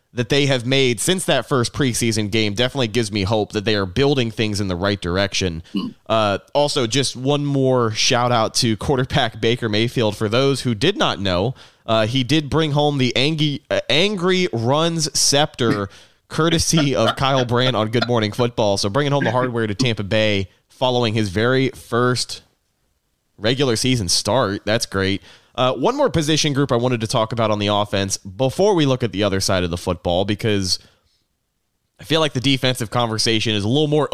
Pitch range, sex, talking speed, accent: 105-130 Hz, male, 190 wpm, American